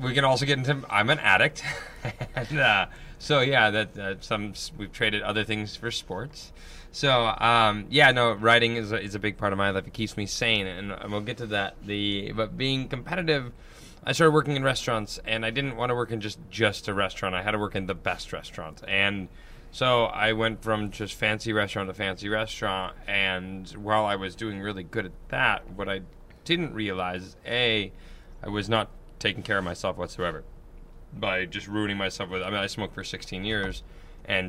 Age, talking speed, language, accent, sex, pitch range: 20-39, 205 wpm, English, American, male, 95-115 Hz